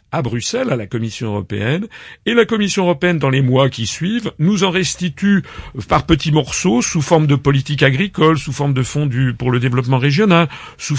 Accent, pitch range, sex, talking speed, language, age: French, 125-165 Hz, male, 190 wpm, French, 50-69